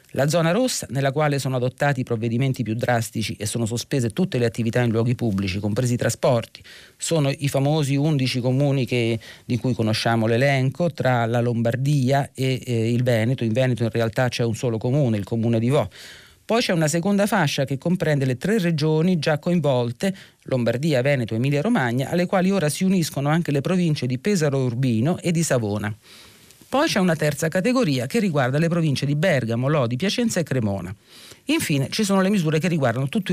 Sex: male